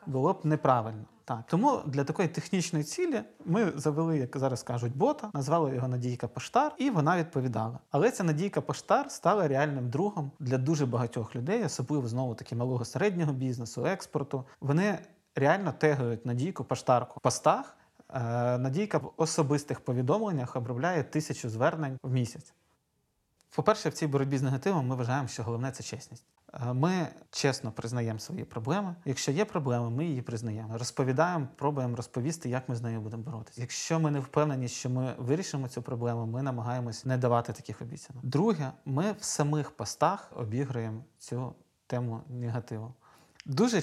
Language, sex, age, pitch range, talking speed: Ukrainian, male, 30-49, 125-155 Hz, 155 wpm